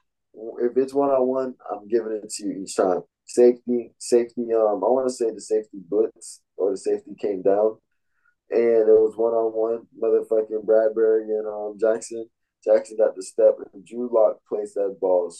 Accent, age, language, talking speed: American, 20-39, English, 185 wpm